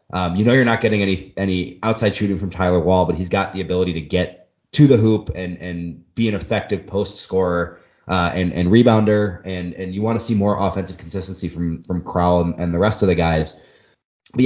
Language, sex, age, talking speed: English, male, 20-39, 225 wpm